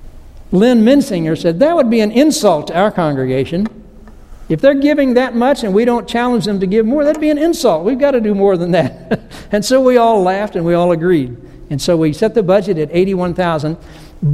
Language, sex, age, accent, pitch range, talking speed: English, male, 60-79, American, 155-230 Hz, 220 wpm